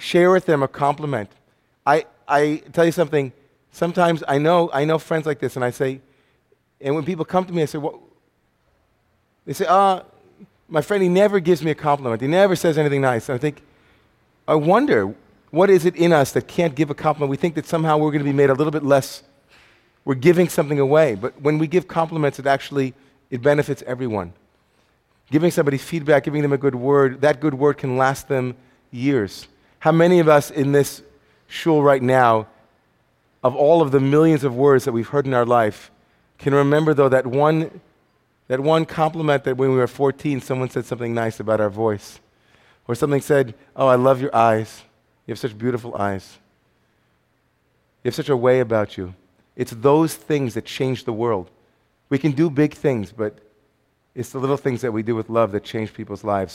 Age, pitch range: 40-59, 125-155 Hz